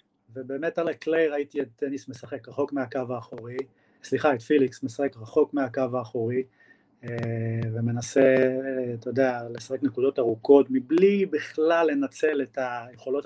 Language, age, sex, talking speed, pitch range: Hebrew, 30-49, male, 125 wpm, 125-145 Hz